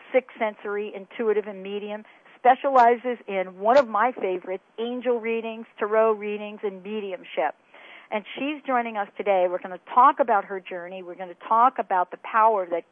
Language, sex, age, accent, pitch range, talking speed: English, female, 50-69, American, 185-255 Hz, 170 wpm